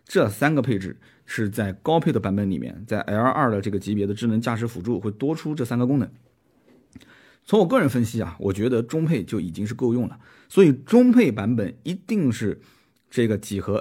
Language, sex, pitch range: Chinese, male, 100-140 Hz